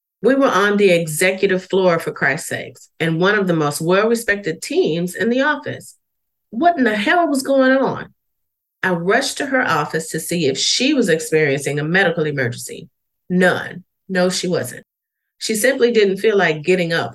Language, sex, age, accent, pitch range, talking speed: English, female, 40-59, American, 155-200 Hz, 180 wpm